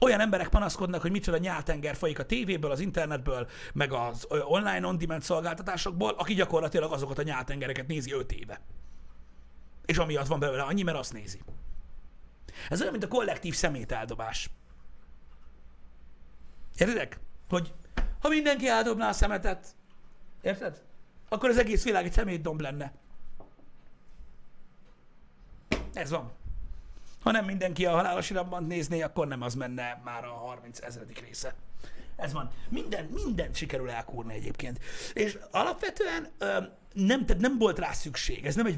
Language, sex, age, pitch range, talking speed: Hungarian, male, 60-79, 120-190 Hz, 140 wpm